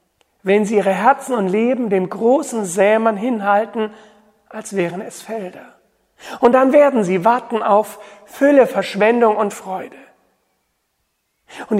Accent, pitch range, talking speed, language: German, 185-235 Hz, 125 wpm, German